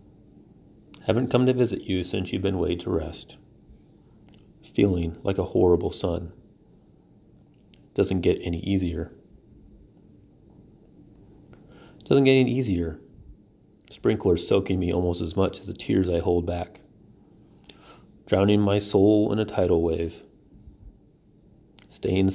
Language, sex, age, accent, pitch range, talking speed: English, male, 30-49, American, 85-100 Hz, 120 wpm